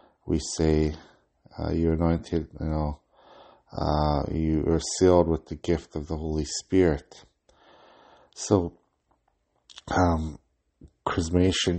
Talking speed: 105 wpm